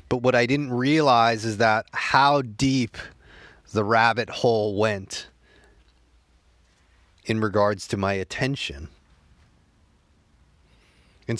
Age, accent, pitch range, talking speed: 30-49, American, 95-120 Hz, 100 wpm